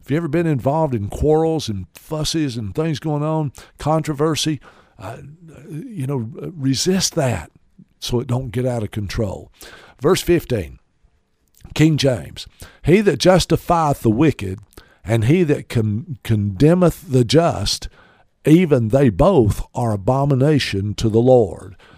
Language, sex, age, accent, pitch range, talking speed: English, male, 50-69, American, 115-155 Hz, 135 wpm